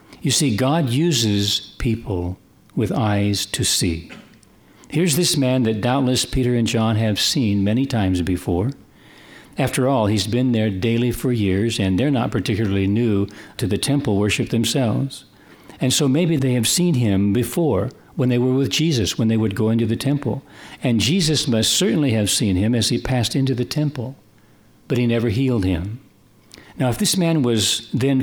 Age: 60-79